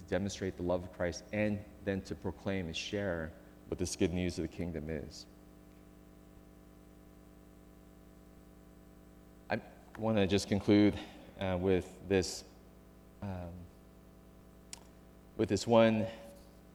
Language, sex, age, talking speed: English, male, 30-49, 110 wpm